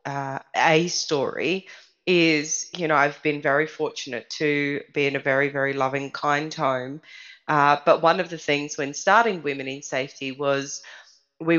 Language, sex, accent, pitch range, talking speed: English, female, Australian, 140-165 Hz, 165 wpm